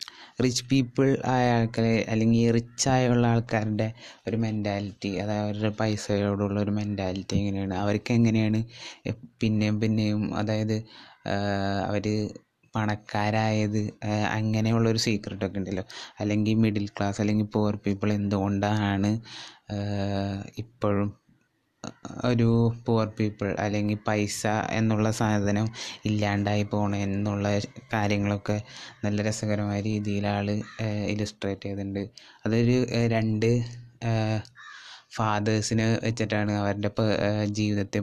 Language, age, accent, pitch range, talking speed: Malayalam, 20-39, native, 105-115 Hz, 85 wpm